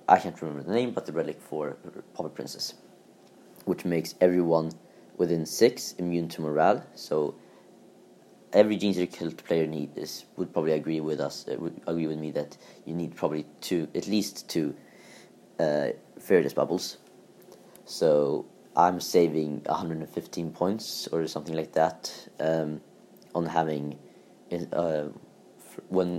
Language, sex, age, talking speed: English, male, 30-49, 140 wpm